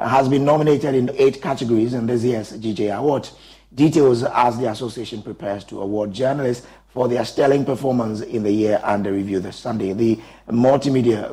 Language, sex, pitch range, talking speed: English, male, 110-130 Hz, 170 wpm